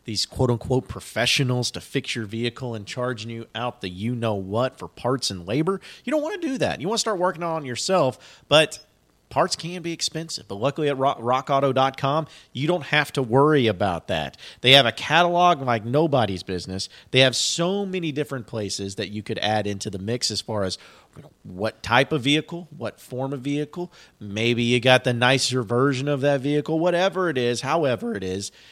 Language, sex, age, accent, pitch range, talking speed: English, male, 40-59, American, 110-145 Hz, 195 wpm